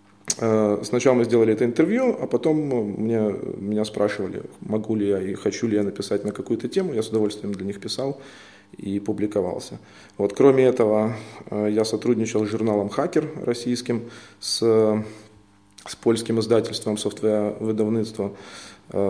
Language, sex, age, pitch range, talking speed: Ukrainian, male, 20-39, 105-120 Hz, 140 wpm